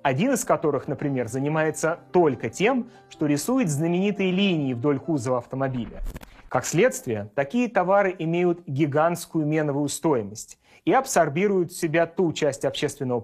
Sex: male